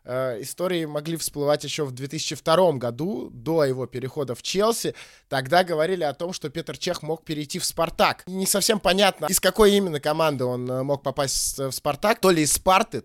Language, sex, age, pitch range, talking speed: Russian, male, 20-39, 125-155 Hz, 180 wpm